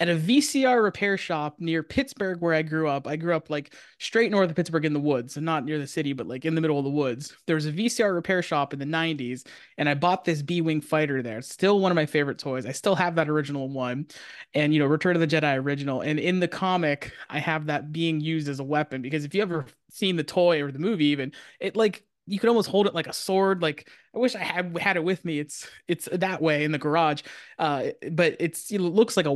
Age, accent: 20-39, American